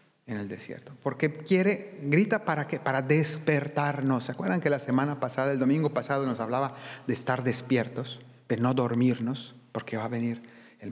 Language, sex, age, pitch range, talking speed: Spanish, male, 40-59, 125-160 Hz, 175 wpm